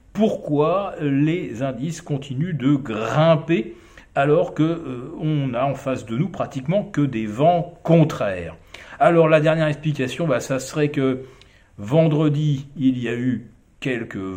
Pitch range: 120-165 Hz